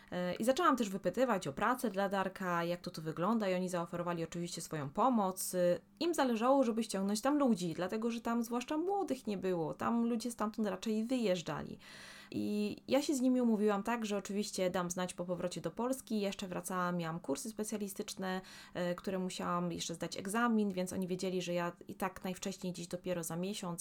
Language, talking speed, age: Polish, 185 wpm, 20-39